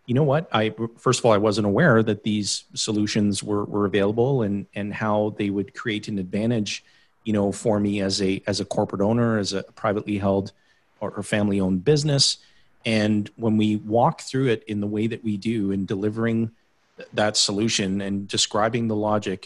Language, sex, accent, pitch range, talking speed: English, male, American, 105-120 Hz, 190 wpm